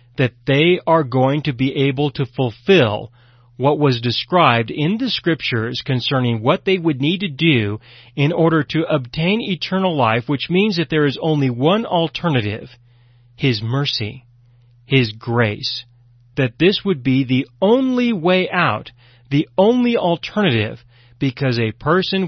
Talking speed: 145 wpm